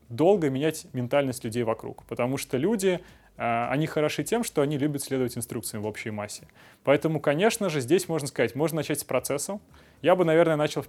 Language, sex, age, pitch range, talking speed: Russian, male, 20-39, 125-160 Hz, 185 wpm